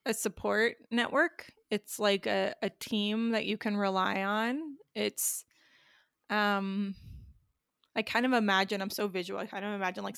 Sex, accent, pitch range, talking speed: female, American, 195-235 Hz, 160 wpm